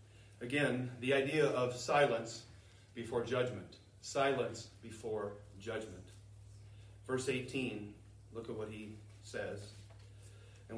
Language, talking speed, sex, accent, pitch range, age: English, 100 wpm, male, American, 115-195 Hz, 40-59